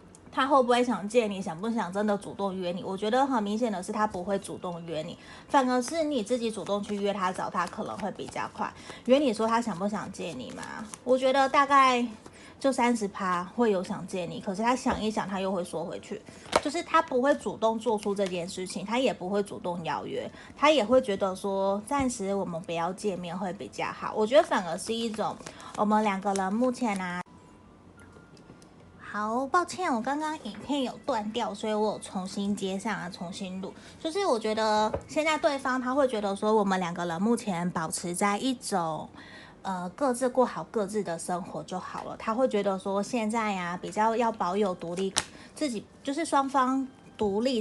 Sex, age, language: female, 20-39, Chinese